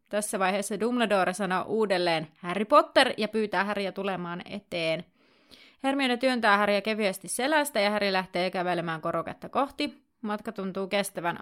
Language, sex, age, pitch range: Finnish, female, 30-49, 180-225 Hz